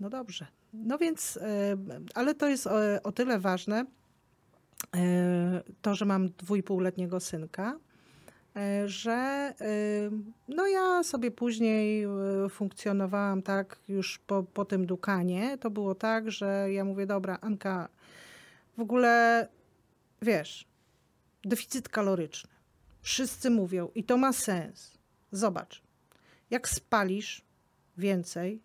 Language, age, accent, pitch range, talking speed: Polish, 40-59, native, 180-225 Hz, 105 wpm